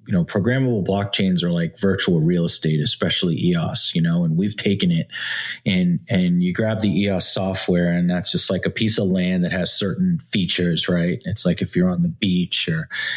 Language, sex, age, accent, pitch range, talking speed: English, male, 30-49, American, 95-145 Hz, 205 wpm